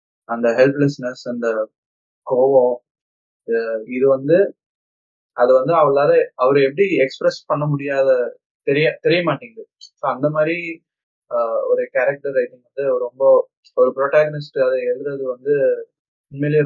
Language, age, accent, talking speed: Tamil, 20-39, native, 110 wpm